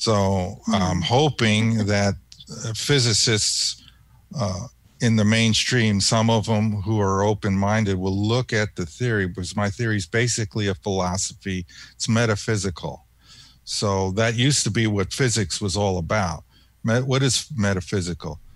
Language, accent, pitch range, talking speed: English, American, 95-115 Hz, 135 wpm